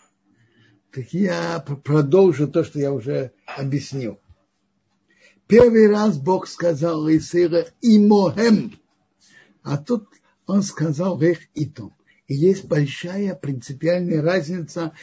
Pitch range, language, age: 155-220 Hz, Russian, 60-79